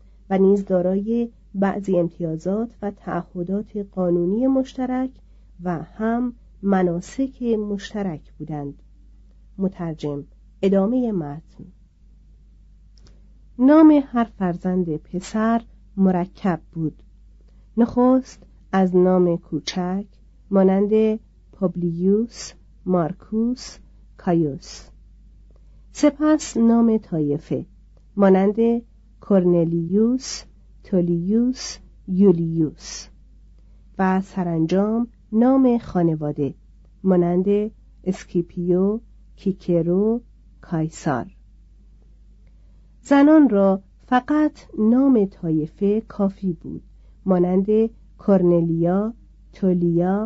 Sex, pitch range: female, 175-225 Hz